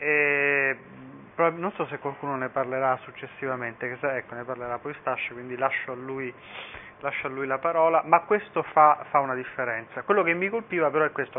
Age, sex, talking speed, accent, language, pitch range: 30-49, male, 185 wpm, native, Italian, 130-160 Hz